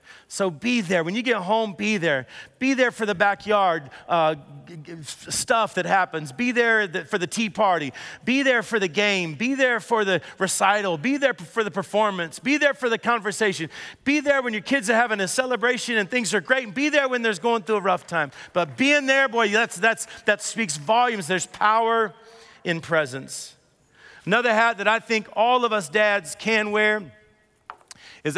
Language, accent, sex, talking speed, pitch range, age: English, American, male, 195 wpm, 185-235 Hz, 40-59